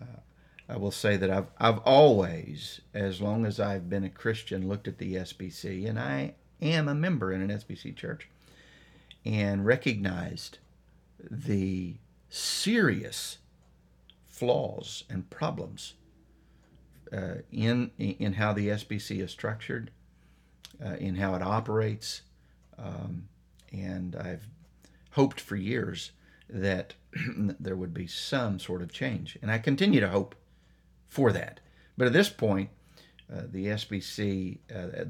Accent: American